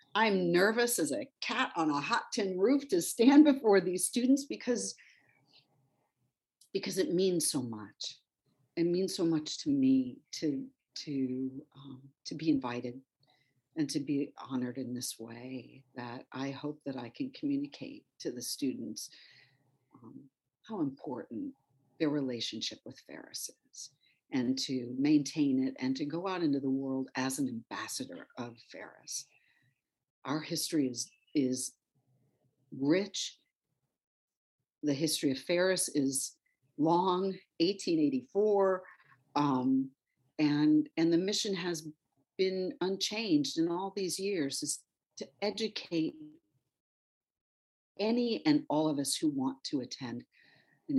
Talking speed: 130 wpm